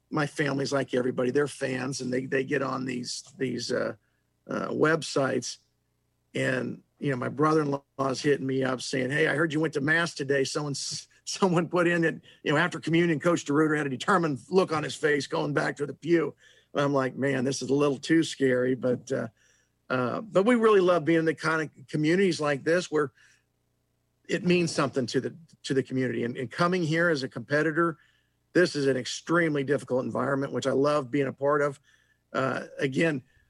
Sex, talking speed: male, 200 wpm